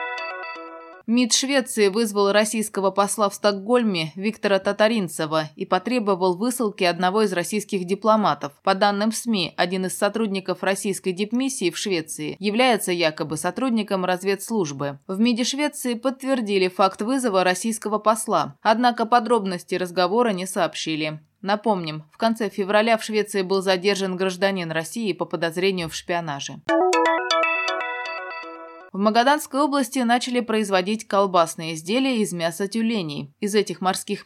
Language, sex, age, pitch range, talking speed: Russian, female, 20-39, 175-225 Hz, 125 wpm